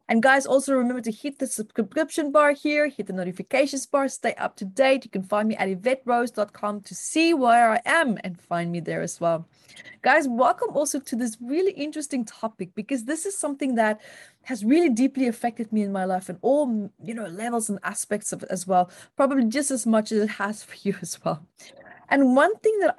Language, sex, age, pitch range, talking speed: English, female, 20-39, 195-280 Hz, 215 wpm